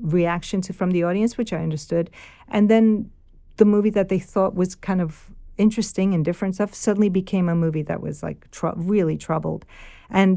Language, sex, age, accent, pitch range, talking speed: English, female, 50-69, American, 170-215 Hz, 185 wpm